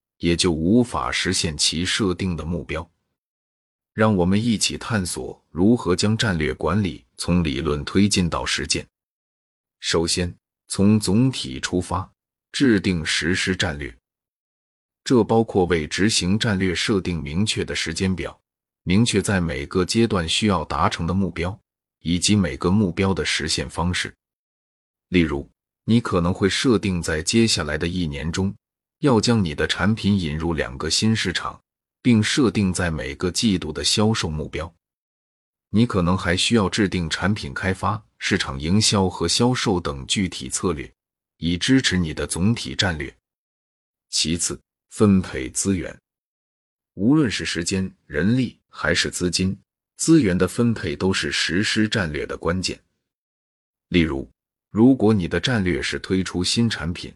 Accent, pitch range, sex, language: native, 85-105 Hz, male, Chinese